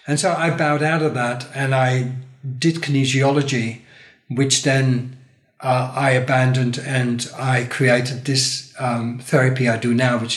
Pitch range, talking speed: 130-155 Hz, 150 wpm